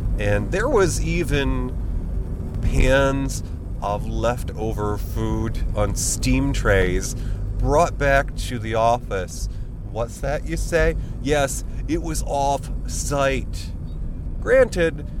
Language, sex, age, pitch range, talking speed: English, male, 30-49, 90-125 Hz, 100 wpm